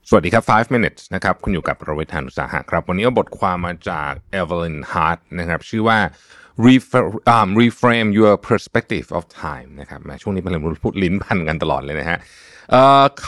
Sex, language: male, Thai